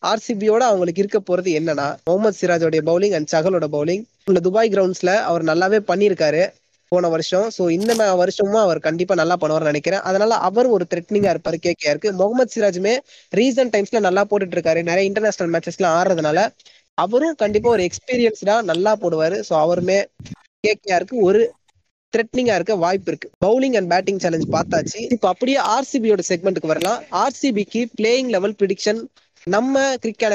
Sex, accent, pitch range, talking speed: female, native, 175-220 Hz, 155 wpm